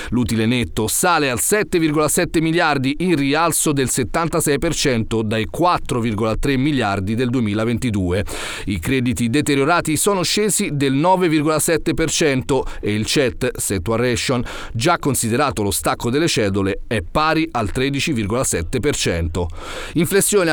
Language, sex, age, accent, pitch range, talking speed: Italian, male, 40-59, native, 125-165 Hz, 110 wpm